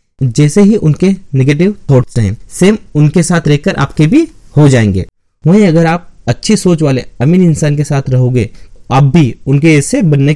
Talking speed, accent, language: 175 wpm, native, Hindi